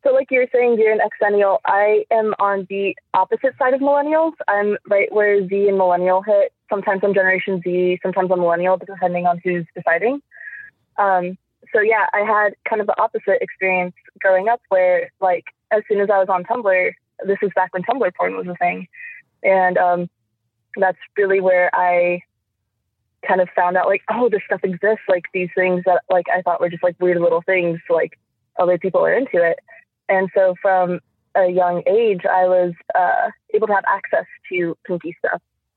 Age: 20-39